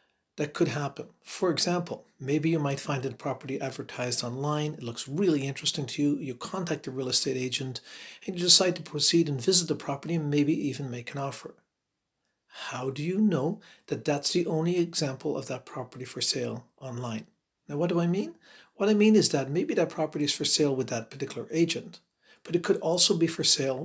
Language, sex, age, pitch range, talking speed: English, male, 50-69, 135-165 Hz, 205 wpm